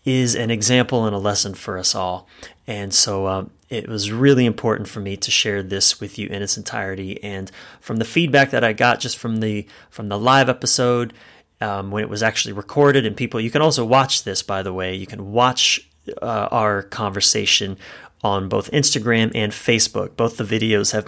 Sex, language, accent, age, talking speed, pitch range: male, English, American, 30-49, 200 wpm, 100-120 Hz